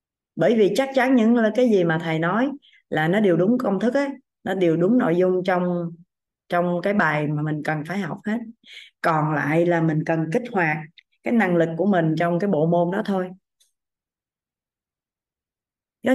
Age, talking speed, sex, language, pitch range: 20-39, 190 wpm, female, Vietnamese, 175-235 Hz